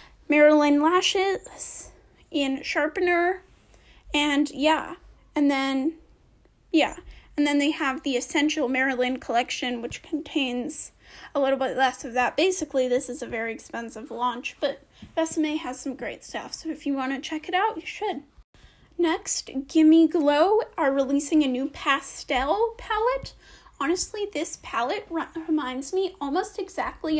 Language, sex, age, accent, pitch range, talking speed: English, female, 10-29, American, 270-335 Hz, 140 wpm